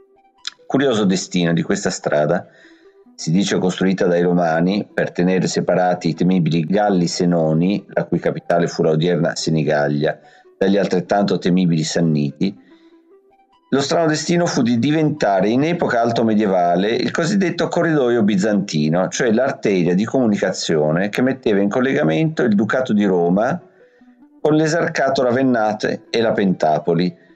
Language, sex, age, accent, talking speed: Italian, male, 50-69, native, 130 wpm